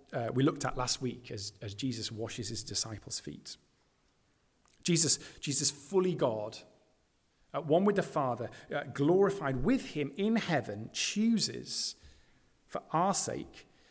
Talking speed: 140 wpm